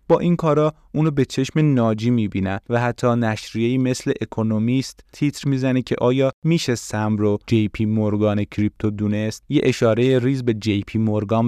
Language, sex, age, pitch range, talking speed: Persian, male, 30-49, 105-130 Hz, 175 wpm